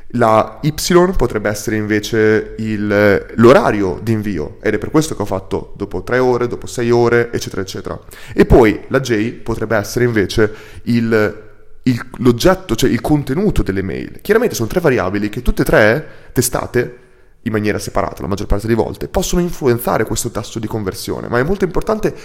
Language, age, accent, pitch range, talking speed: Italian, 30-49, native, 105-125 Hz, 180 wpm